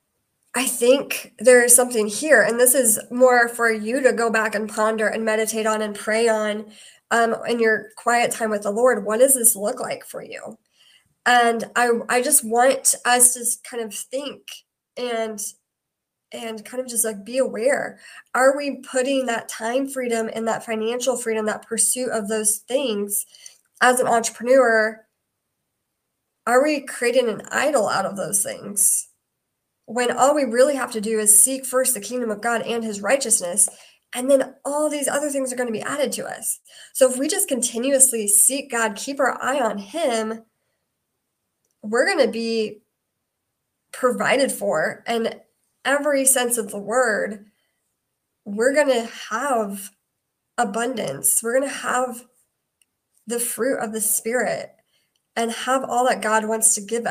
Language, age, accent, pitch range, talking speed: English, 20-39, American, 220-255 Hz, 165 wpm